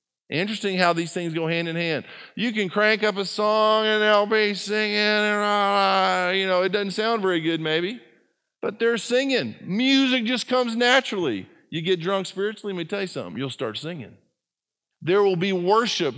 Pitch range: 140-200 Hz